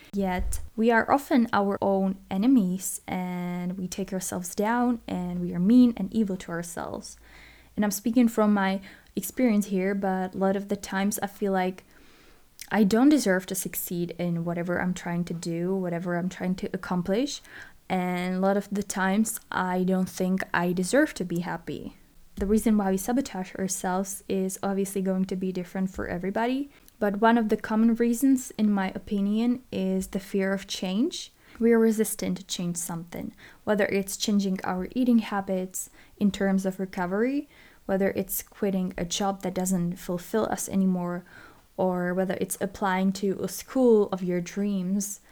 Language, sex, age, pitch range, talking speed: English, female, 20-39, 185-220 Hz, 170 wpm